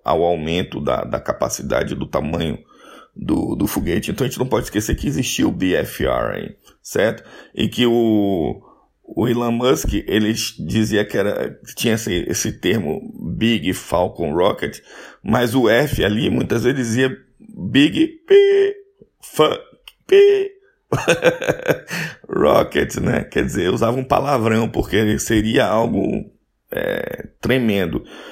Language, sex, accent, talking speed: Portuguese, male, Brazilian, 135 wpm